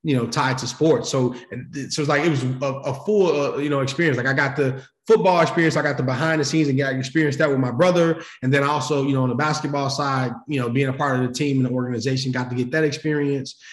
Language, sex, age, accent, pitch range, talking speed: English, male, 20-39, American, 125-150 Hz, 270 wpm